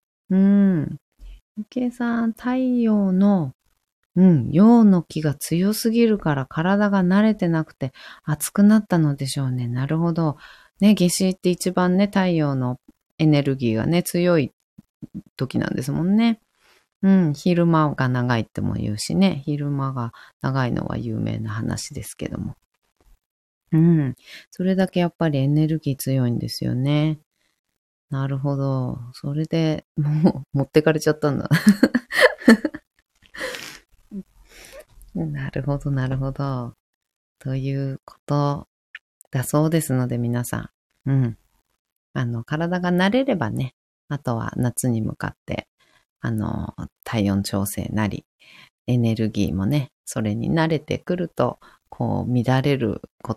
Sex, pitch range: female, 125-180 Hz